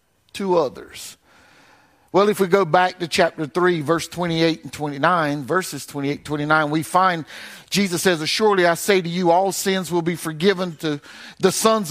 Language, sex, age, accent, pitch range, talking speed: English, male, 50-69, American, 185-270 Hz, 170 wpm